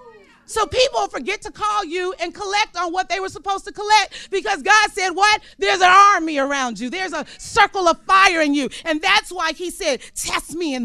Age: 40-59